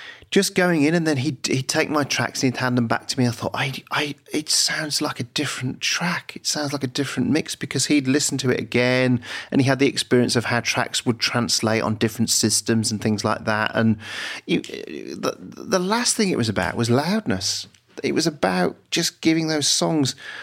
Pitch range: 110-150 Hz